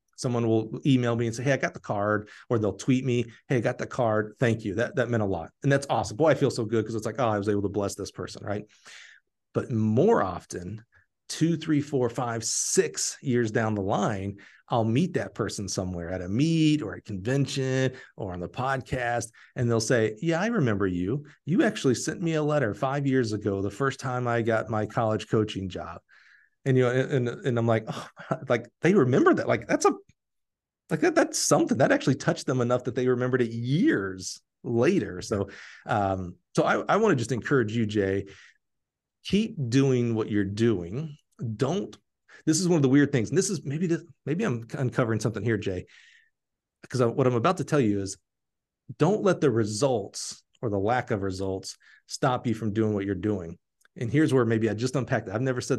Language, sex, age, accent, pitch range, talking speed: English, male, 40-59, American, 105-135 Hz, 215 wpm